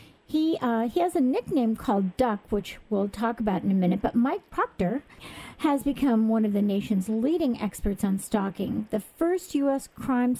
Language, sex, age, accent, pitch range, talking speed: English, female, 50-69, American, 205-245 Hz, 185 wpm